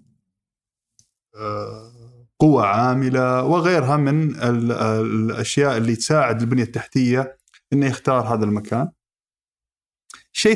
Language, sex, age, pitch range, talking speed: Arabic, male, 20-39, 115-155 Hz, 80 wpm